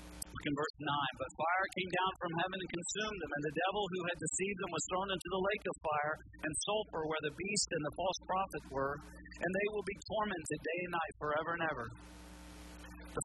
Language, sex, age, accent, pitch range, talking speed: English, male, 50-69, American, 110-180 Hz, 220 wpm